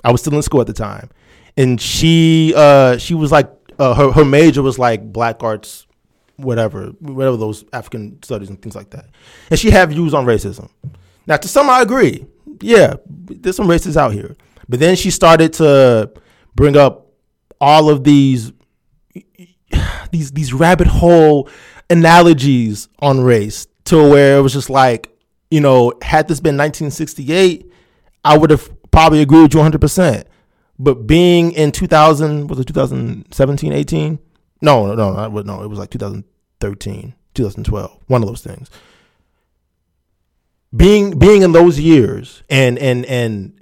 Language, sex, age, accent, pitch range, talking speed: English, male, 20-39, American, 115-160 Hz, 160 wpm